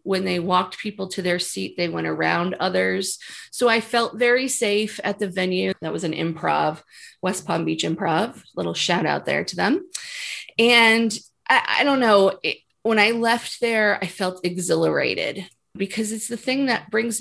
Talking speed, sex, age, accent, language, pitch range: 180 wpm, female, 30-49, American, English, 180-235 Hz